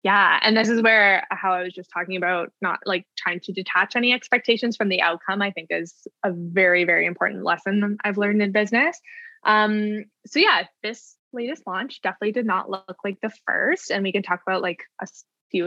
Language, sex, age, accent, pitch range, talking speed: English, female, 10-29, American, 185-225 Hz, 205 wpm